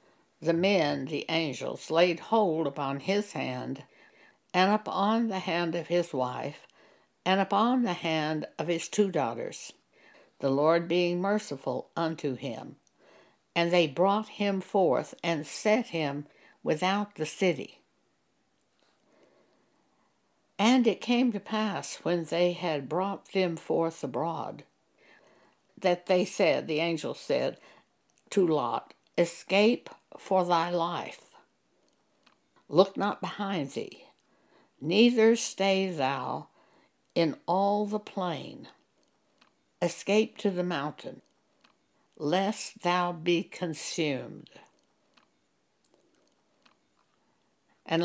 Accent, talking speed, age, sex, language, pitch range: American, 105 wpm, 60-79, female, English, 160-200 Hz